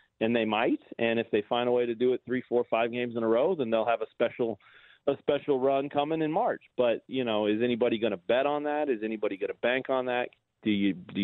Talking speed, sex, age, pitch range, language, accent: 265 wpm, male, 40-59, 115-135 Hz, English, American